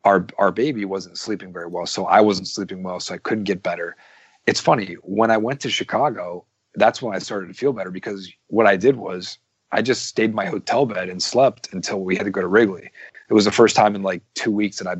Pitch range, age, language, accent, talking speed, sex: 90-100 Hz, 30-49, English, American, 250 wpm, male